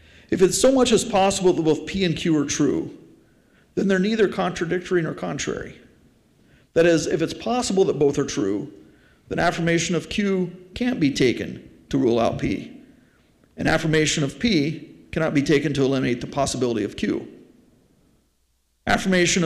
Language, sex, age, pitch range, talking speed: English, male, 50-69, 140-190 Hz, 165 wpm